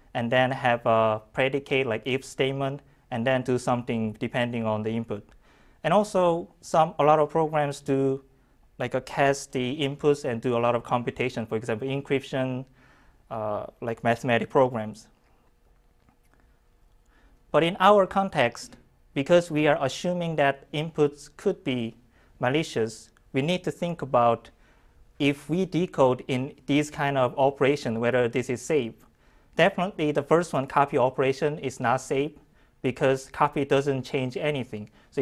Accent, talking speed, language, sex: Japanese, 150 wpm, English, male